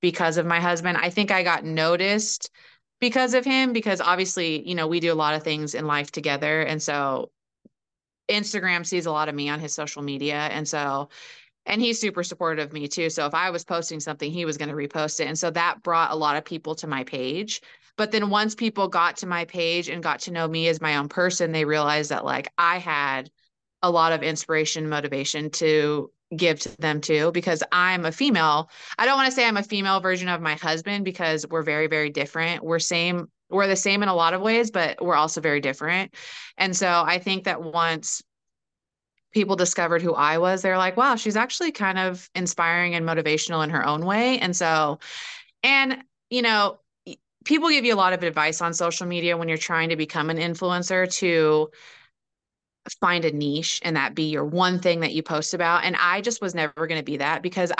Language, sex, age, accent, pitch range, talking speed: English, female, 30-49, American, 155-185 Hz, 215 wpm